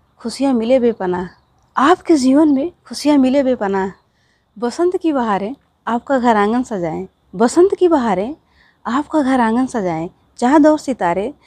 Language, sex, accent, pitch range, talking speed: Hindi, female, native, 210-285 Hz, 135 wpm